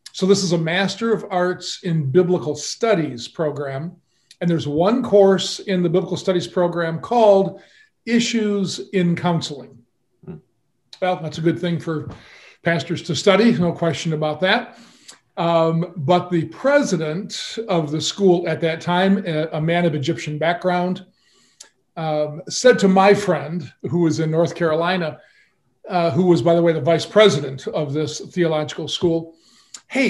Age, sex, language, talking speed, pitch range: 50-69, male, English, 150 wpm, 160-195 Hz